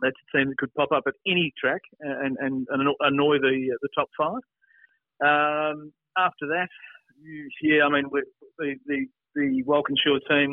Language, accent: English, Australian